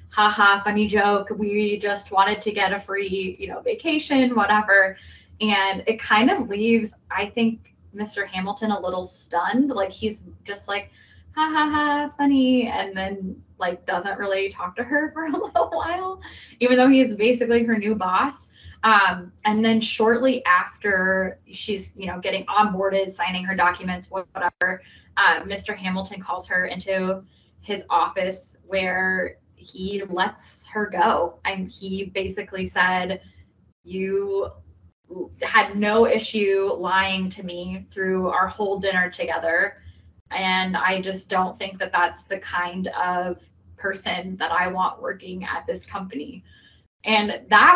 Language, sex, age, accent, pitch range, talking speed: English, female, 10-29, American, 185-225 Hz, 145 wpm